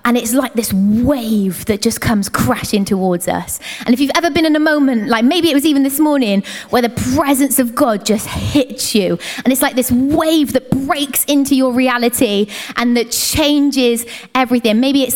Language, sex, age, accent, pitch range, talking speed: English, female, 20-39, British, 235-300 Hz, 200 wpm